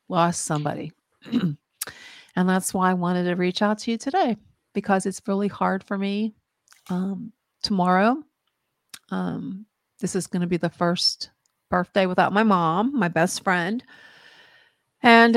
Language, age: English, 50-69